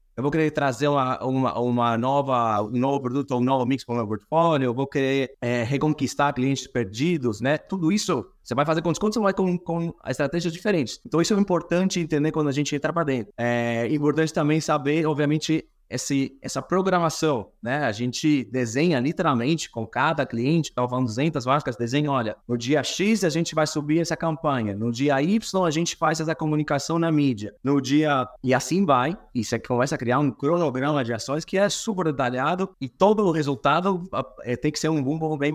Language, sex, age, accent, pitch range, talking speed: Portuguese, male, 20-39, Brazilian, 130-165 Hz, 205 wpm